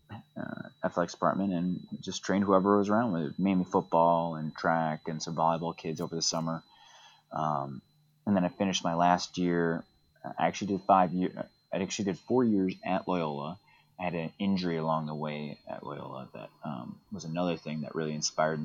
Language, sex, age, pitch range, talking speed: English, male, 30-49, 80-95 Hz, 185 wpm